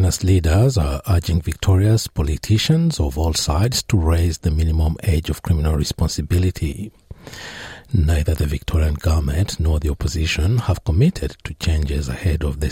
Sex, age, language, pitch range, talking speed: male, 60-79, English, 75-95 Hz, 140 wpm